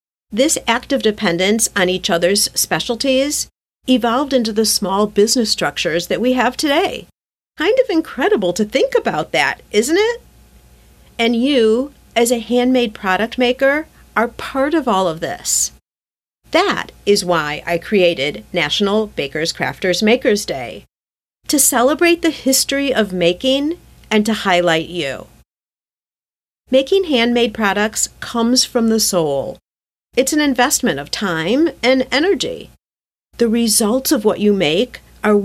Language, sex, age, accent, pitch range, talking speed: English, female, 50-69, American, 190-265 Hz, 135 wpm